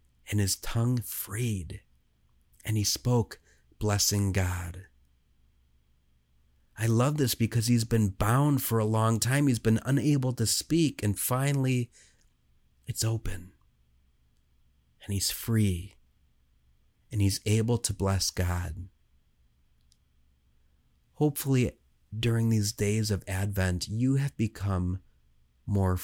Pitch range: 70-110 Hz